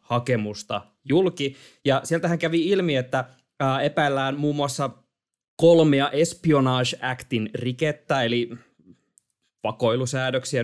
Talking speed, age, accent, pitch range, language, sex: 85 wpm, 20-39, native, 125-150 Hz, Finnish, male